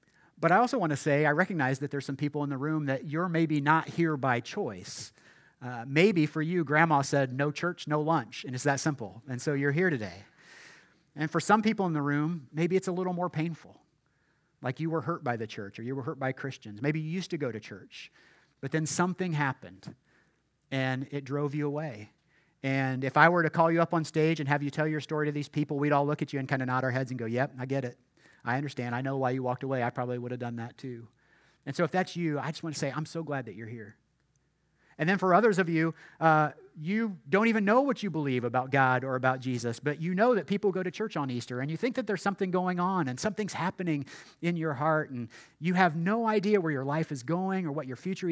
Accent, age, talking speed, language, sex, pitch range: American, 40-59, 255 wpm, English, male, 135-170 Hz